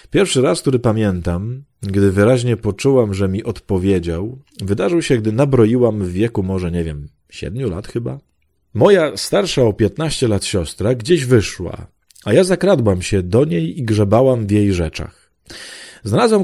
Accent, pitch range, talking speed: native, 95-130 Hz, 155 wpm